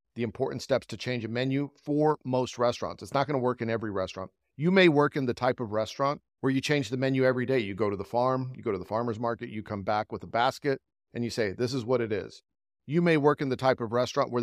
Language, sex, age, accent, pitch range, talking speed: English, male, 40-59, American, 110-140 Hz, 280 wpm